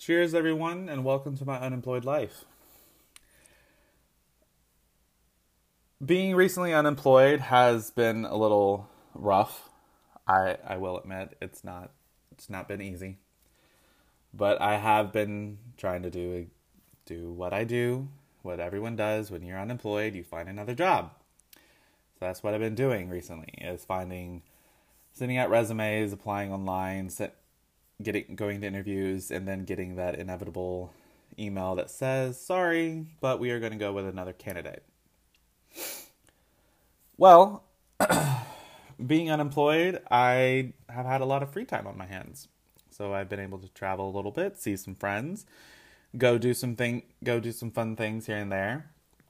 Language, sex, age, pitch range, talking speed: English, male, 20-39, 95-135 Hz, 150 wpm